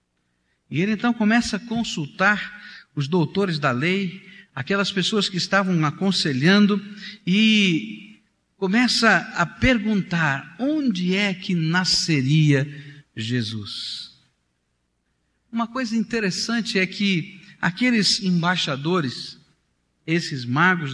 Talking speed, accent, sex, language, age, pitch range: 95 wpm, Brazilian, male, Portuguese, 50-69, 110-185 Hz